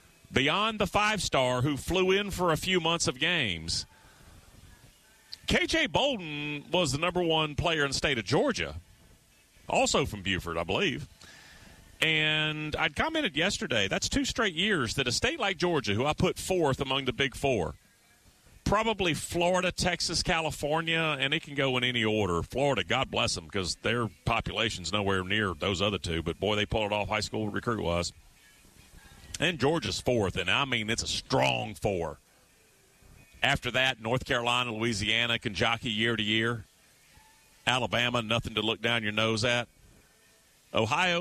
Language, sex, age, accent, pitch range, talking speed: English, male, 40-59, American, 105-160 Hz, 160 wpm